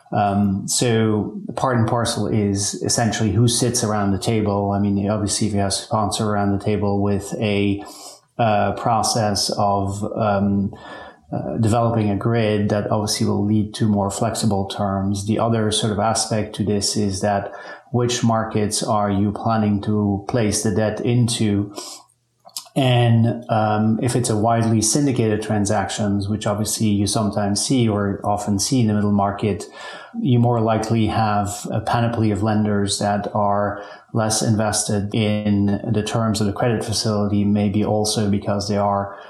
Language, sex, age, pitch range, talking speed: English, male, 30-49, 100-110 Hz, 160 wpm